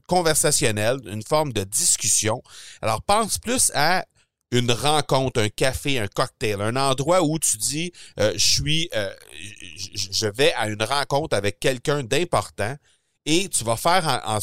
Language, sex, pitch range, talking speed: French, male, 110-150 Hz, 155 wpm